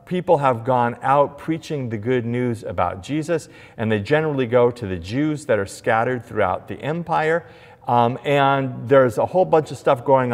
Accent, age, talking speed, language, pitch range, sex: American, 40-59, 185 wpm, English, 105-145 Hz, male